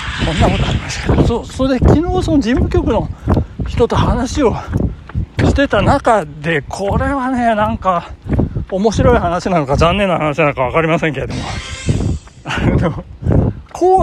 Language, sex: Japanese, male